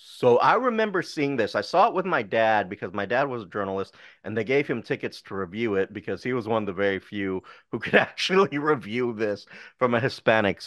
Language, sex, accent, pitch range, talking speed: English, male, American, 95-115 Hz, 230 wpm